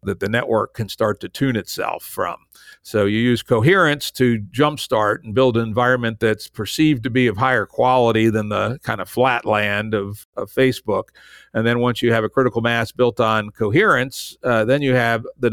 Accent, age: American, 50-69